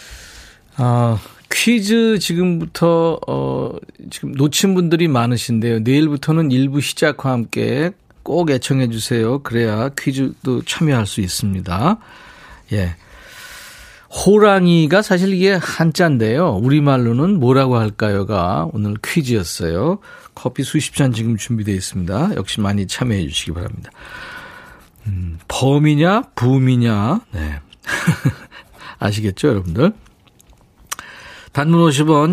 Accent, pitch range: native, 105-155 Hz